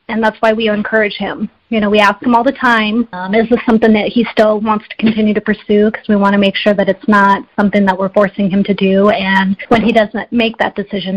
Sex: female